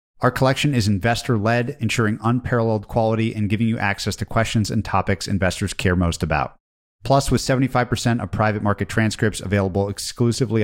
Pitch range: 100-120 Hz